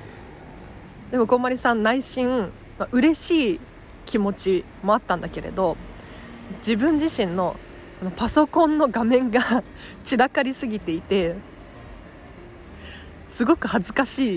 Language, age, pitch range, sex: Japanese, 40-59, 190-260 Hz, female